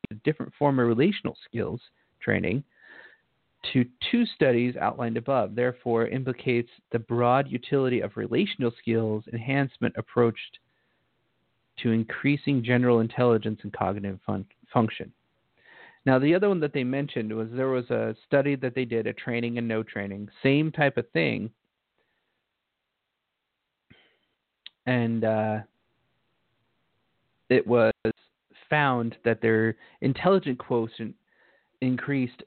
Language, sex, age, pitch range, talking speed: English, male, 40-59, 115-135 Hz, 115 wpm